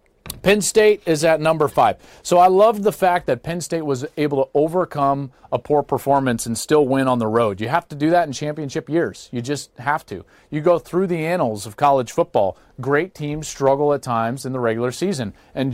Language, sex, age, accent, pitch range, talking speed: English, male, 40-59, American, 115-160 Hz, 215 wpm